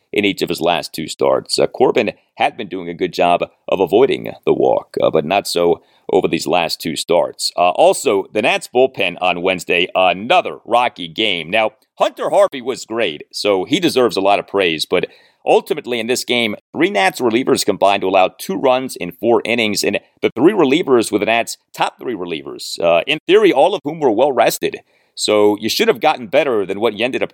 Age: 40-59